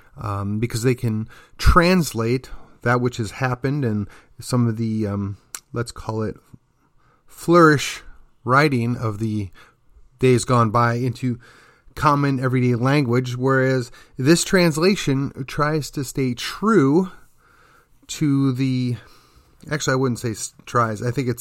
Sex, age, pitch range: male, 30-49, 120-145 Hz